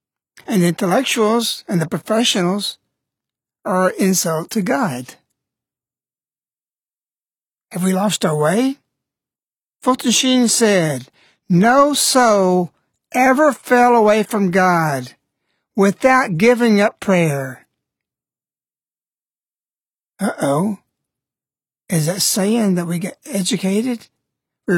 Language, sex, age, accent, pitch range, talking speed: English, male, 60-79, American, 175-245 Hz, 95 wpm